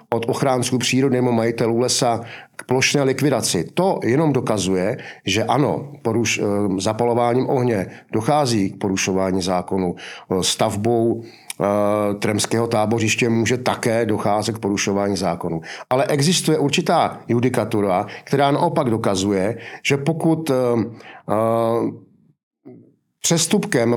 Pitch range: 115-145 Hz